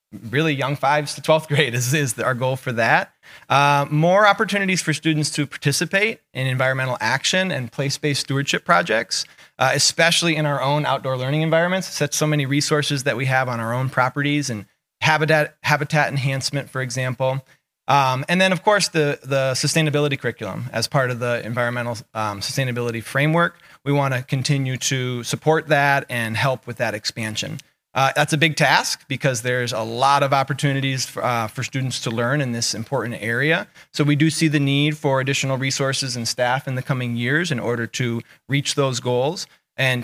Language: English